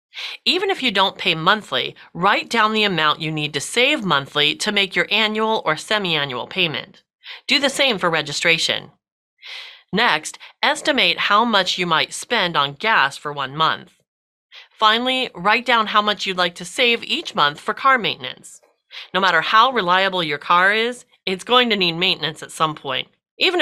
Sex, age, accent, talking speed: female, 30-49, American, 175 wpm